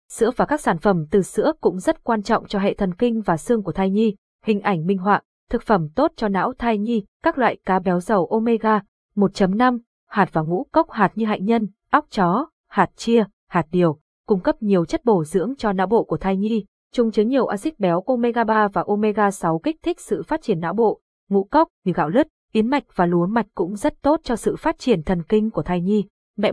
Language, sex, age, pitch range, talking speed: Vietnamese, female, 20-39, 180-235 Hz, 235 wpm